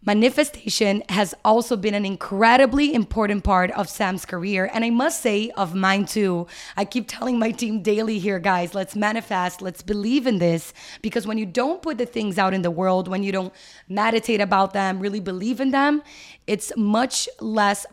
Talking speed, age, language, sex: 185 wpm, 20-39, English, female